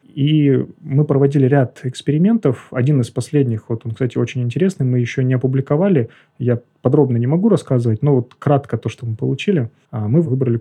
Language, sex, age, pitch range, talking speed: Russian, male, 30-49, 120-150 Hz, 175 wpm